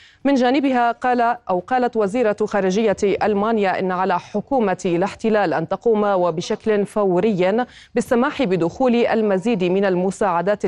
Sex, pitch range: female, 185-225 Hz